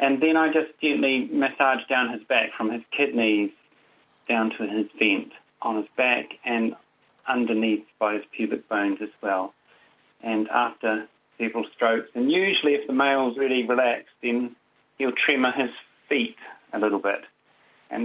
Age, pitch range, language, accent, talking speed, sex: 40-59, 105-125 Hz, English, British, 155 wpm, male